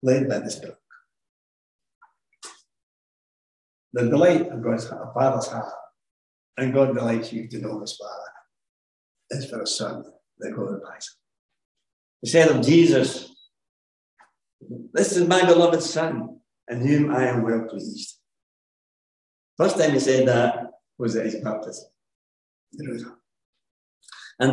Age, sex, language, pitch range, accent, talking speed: 60-79, male, English, 115-150 Hz, British, 120 wpm